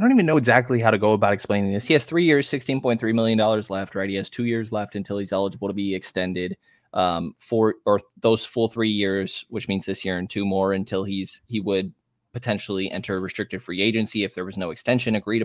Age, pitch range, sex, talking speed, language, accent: 20-39, 100-125 Hz, male, 235 wpm, English, American